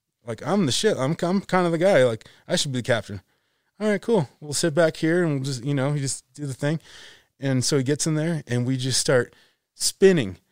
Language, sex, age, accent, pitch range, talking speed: English, male, 20-39, American, 125-165 Hz, 250 wpm